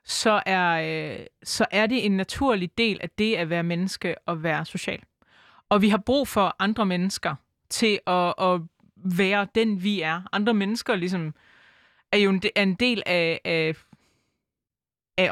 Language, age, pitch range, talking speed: Danish, 20-39, 175-215 Hz, 165 wpm